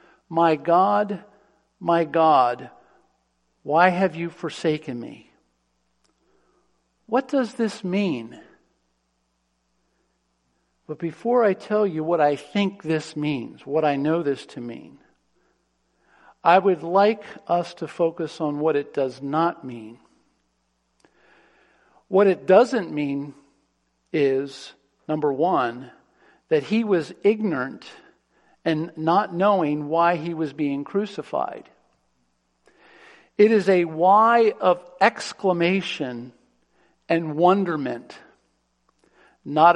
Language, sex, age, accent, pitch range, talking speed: English, male, 50-69, American, 125-185 Hz, 105 wpm